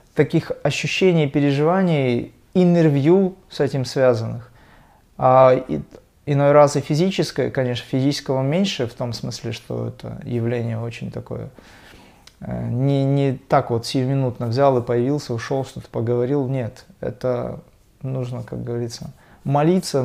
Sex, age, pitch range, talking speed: male, 20-39, 125-165 Hz, 125 wpm